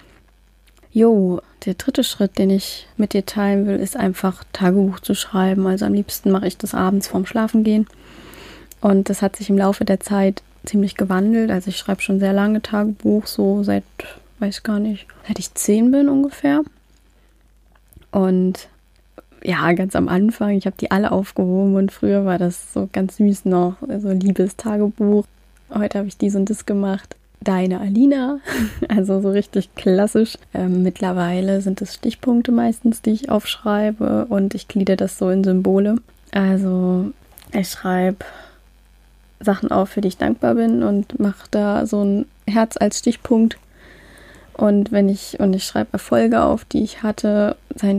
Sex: female